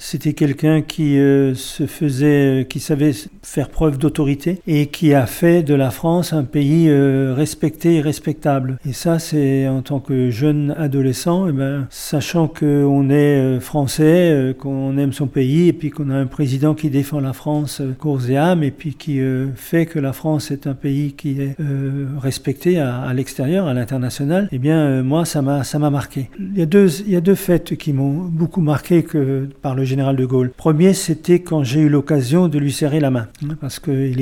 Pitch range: 130-155 Hz